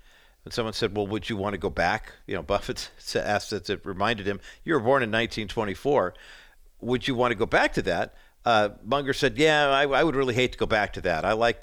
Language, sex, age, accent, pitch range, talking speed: English, male, 50-69, American, 95-125 Hz, 235 wpm